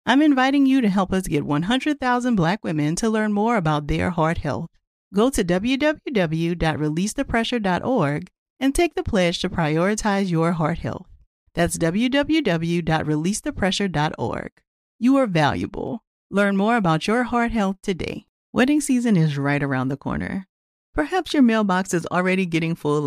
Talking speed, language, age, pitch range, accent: 145 wpm, English, 40-59, 155-235 Hz, American